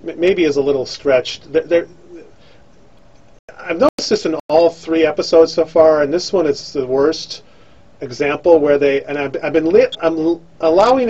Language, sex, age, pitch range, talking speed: English, male, 40-59, 130-165 Hz, 170 wpm